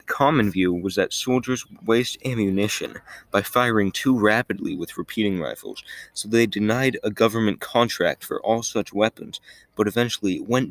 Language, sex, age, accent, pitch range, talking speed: English, male, 20-39, American, 95-115 Hz, 150 wpm